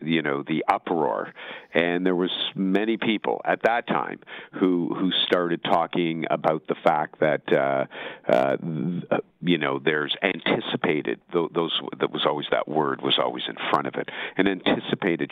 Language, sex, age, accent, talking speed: English, male, 50-69, American, 170 wpm